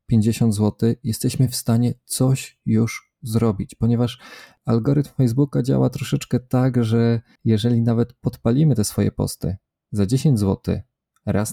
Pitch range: 100-120 Hz